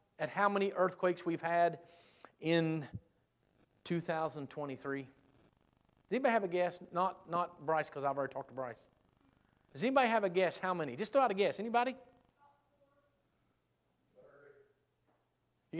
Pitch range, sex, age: 160-255 Hz, male, 40-59